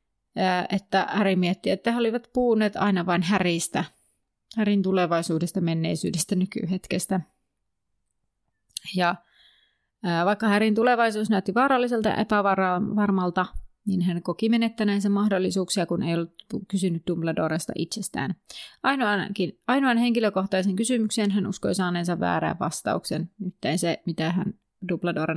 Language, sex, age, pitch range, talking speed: Finnish, female, 30-49, 175-215 Hz, 115 wpm